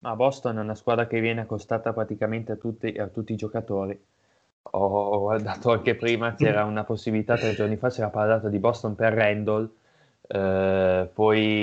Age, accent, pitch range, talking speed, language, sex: 20-39, native, 105-120 Hz, 180 wpm, Italian, male